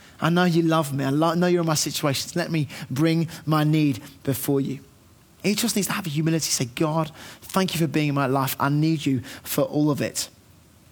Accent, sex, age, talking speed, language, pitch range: British, male, 20-39, 225 wpm, English, 135-180 Hz